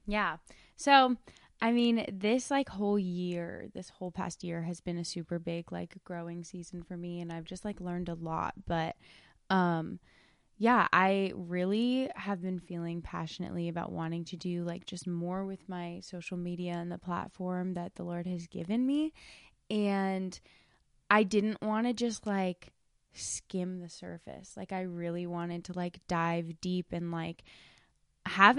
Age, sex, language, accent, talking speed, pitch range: 20-39, female, English, American, 165 wpm, 175-200 Hz